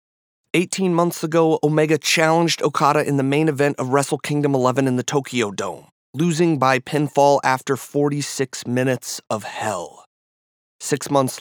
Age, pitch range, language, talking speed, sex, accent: 30-49, 135-165 Hz, English, 145 wpm, male, American